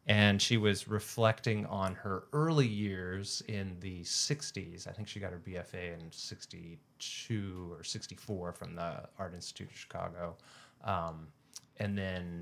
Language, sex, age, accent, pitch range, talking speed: English, male, 30-49, American, 95-120 Hz, 145 wpm